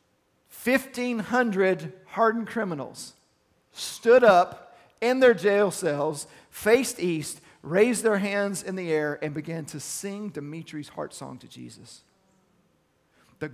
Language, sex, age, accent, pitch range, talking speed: English, male, 40-59, American, 145-190 Hz, 120 wpm